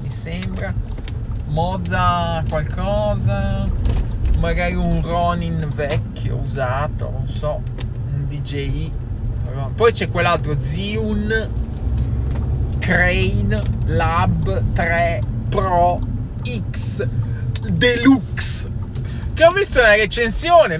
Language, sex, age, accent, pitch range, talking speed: Italian, male, 20-39, native, 115-180 Hz, 80 wpm